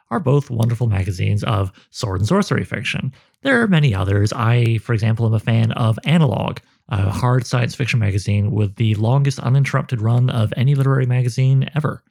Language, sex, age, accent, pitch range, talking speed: English, male, 30-49, American, 110-140 Hz, 180 wpm